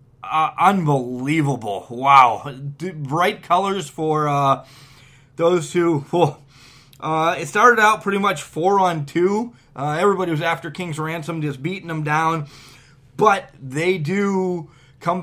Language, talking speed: English, 120 wpm